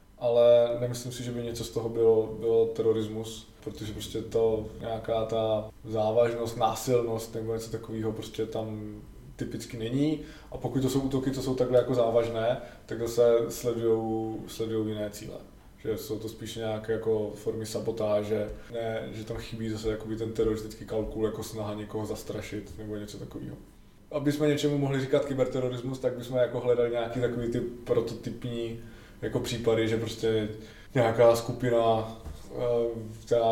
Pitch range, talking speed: 110-120 Hz, 150 wpm